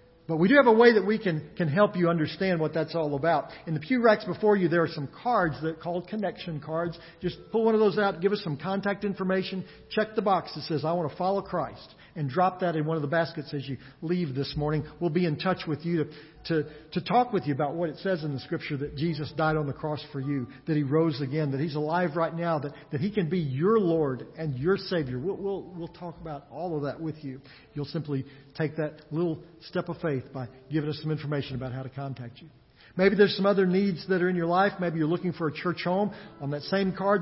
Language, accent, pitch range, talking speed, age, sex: English, American, 150-180 Hz, 260 wpm, 50-69, male